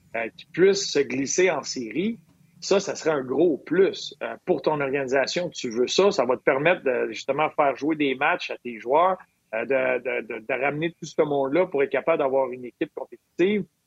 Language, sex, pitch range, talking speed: French, male, 135-185 Hz, 200 wpm